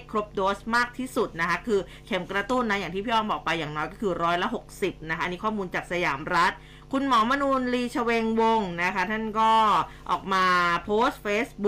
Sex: female